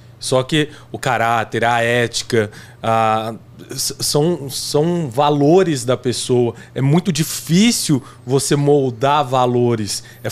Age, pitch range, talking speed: 20-39, 125-155 Hz, 110 wpm